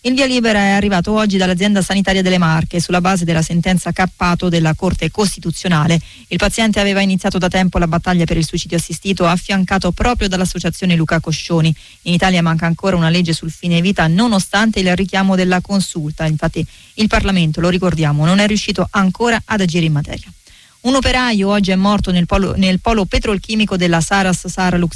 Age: 30-49